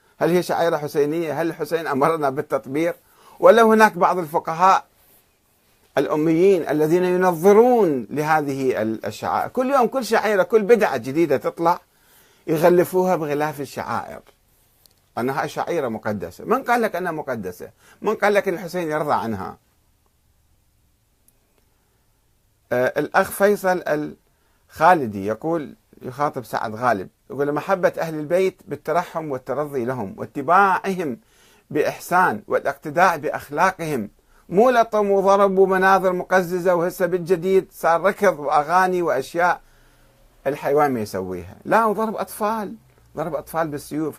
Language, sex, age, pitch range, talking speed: Arabic, male, 50-69, 150-200 Hz, 110 wpm